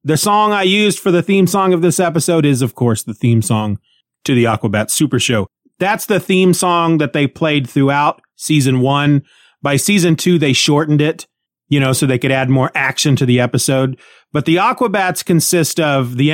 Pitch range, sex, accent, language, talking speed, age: 130-175 Hz, male, American, English, 200 wpm, 30-49